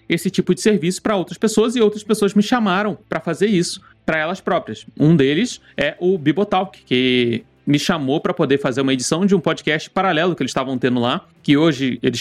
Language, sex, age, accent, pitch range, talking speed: Portuguese, male, 30-49, Brazilian, 130-180 Hz, 210 wpm